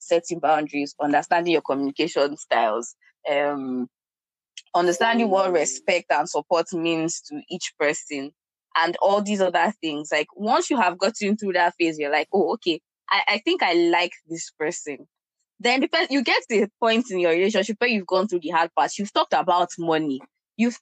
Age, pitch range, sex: 20-39, 165-215 Hz, female